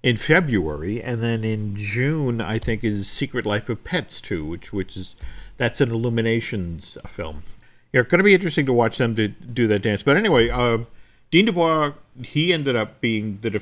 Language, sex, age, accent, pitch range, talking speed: English, male, 50-69, American, 105-130 Hz, 205 wpm